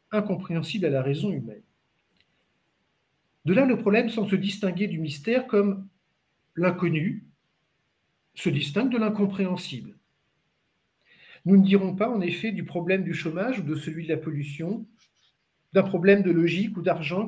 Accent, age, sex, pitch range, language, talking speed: French, 50-69, male, 155-200 Hz, French, 145 wpm